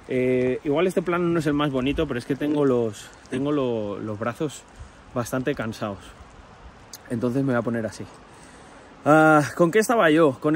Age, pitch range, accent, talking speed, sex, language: 30-49, 120-165 Hz, Spanish, 180 wpm, male, Spanish